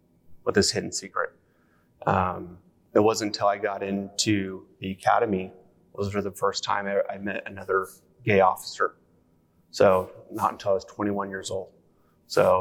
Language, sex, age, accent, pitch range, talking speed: English, male, 30-49, American, 95-110 Hz, 165 wpm